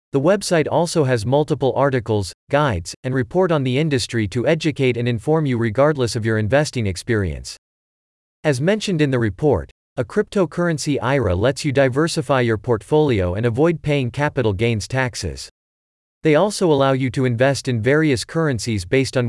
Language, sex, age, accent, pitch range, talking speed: English, male, 40-59, American, 110-150 Hz, 160 wpm